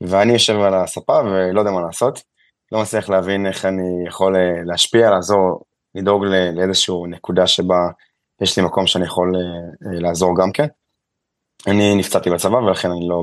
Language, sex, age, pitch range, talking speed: Hebrew, male, 20-39, 90-100 Hz, 160 wpm